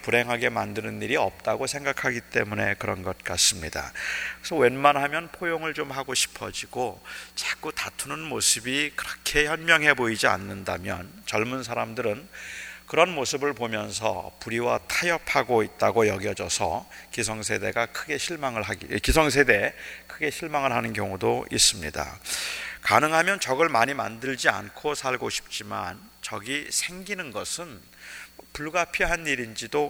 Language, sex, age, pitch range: Korean, male, 40-59, 115-150 Hz